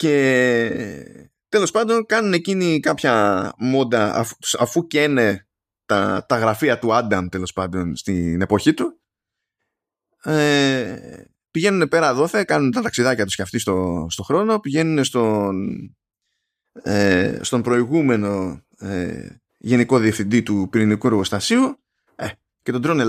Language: Greek